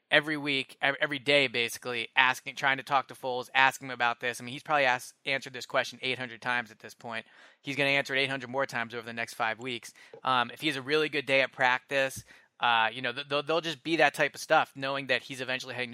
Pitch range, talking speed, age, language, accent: 120-145 Hz, 255 wpm, 20-39, English, American